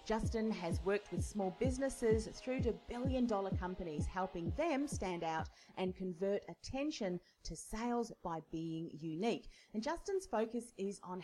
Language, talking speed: English, 145 wpm